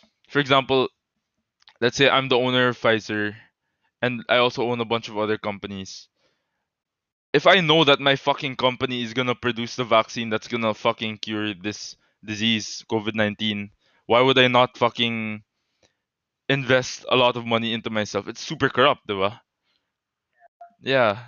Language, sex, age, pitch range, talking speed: English, male, 20-39, 110-135 Hz, 150 wpm